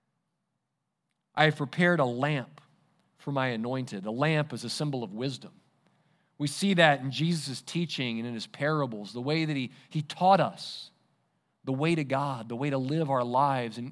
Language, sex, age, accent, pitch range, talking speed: English, male, 40-59, American, 125-170 Hz, 185 wpm